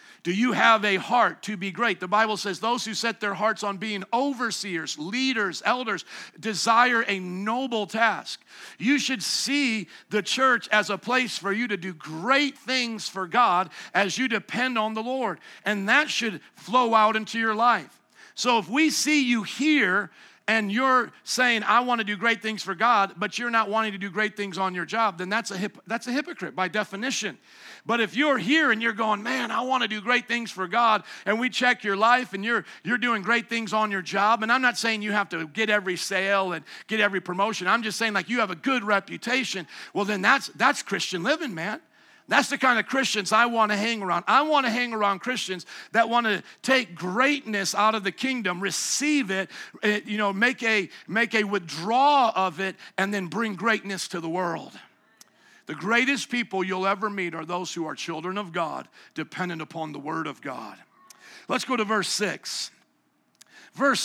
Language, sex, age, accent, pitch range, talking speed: English, male, 50-69, American, 195-245 Hz, 205 wpm